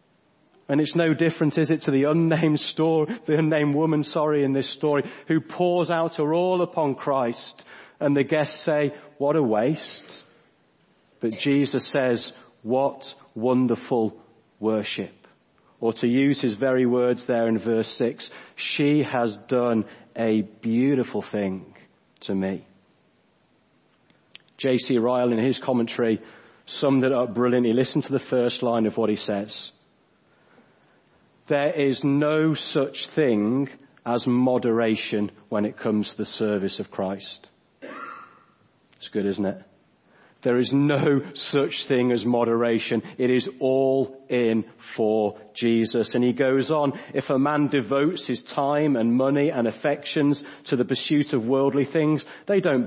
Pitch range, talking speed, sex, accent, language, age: 115-150 Hz, 145 wpm, male, British, English, 40-59